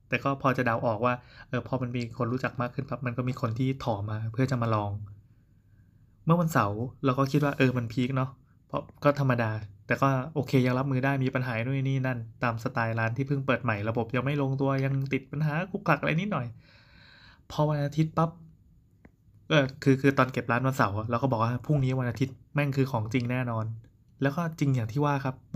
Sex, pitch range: male, 120-135 Hz